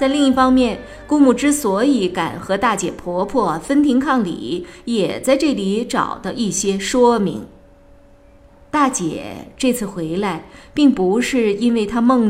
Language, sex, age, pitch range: Chinese, female, 20-39, 190-260 Hz